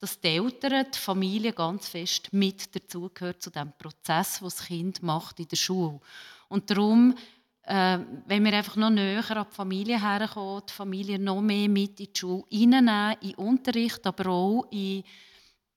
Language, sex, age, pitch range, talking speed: German, female, 30-49, 185-225 Hz, 165 wpm